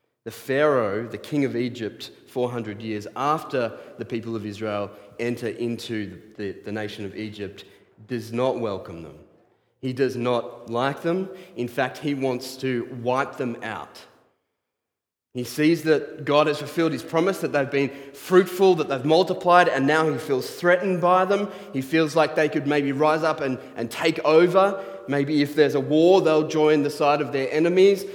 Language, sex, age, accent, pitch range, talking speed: English, male, 30-49, Australian, 120-155 Hz, 175 wpm